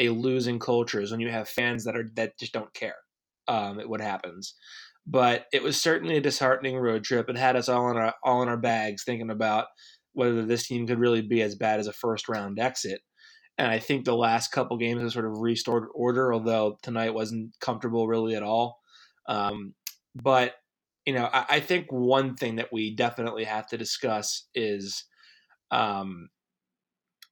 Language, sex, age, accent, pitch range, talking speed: English, male, 20-39, American, 115-130 Hz, 190 wpm